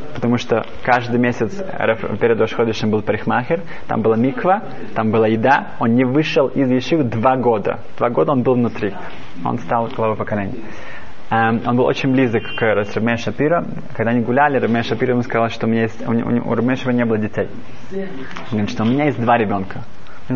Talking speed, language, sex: 175 wpm, Russian, male